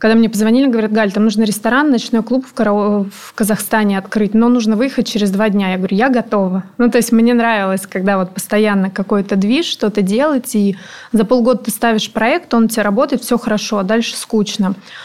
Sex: female